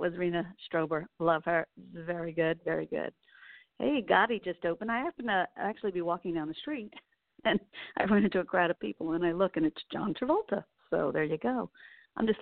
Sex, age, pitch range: female, 50-69, 165-230 Hz